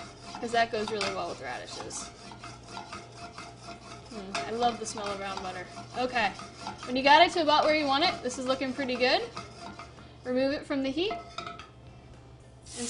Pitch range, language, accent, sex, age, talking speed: 225-285 Hz, English, American, female, 10-29, 170 wpm